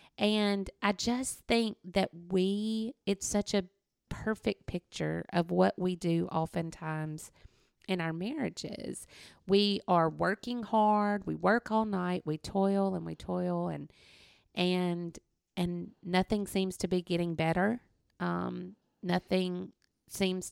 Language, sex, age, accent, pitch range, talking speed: English, female, 30-49, American, 175-205 Hz, 130 wpm